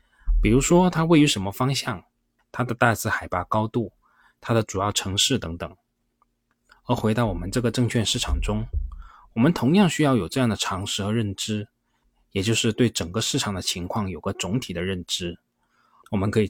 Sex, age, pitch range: male, 20-39, 90-120 Hz